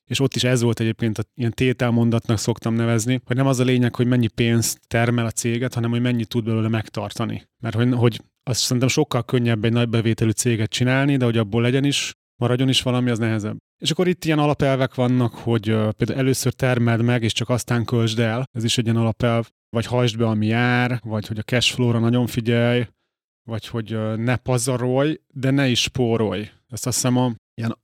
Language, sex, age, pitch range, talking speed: Hungarian, male, 30-49, 115-130 Hz, 200 wpm